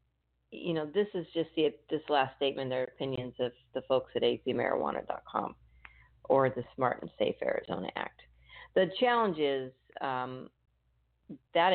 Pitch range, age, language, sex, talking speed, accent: 130-205 Hz, 50-69, English, female, 145 wpm, American